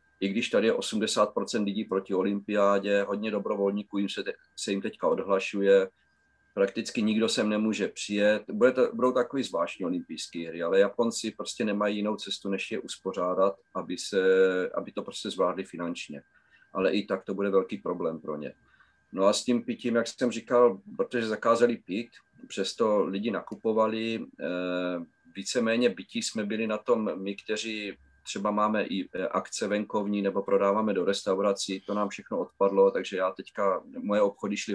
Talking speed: 155 wpm